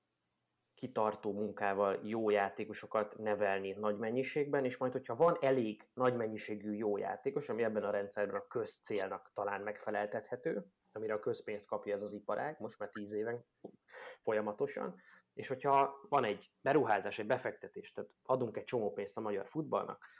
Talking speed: 155 wpm